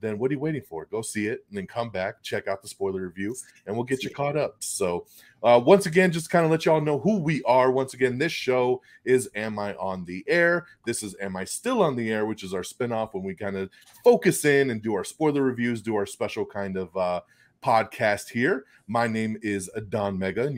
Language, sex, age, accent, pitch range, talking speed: English, male, 30-49, American, 100-145 Hz, 250 wpm